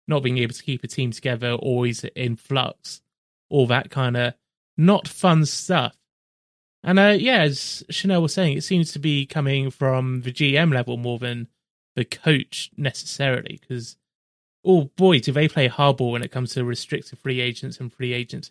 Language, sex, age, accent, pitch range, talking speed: English, male, 20-39, British, 130-180 Hz, 180 wpm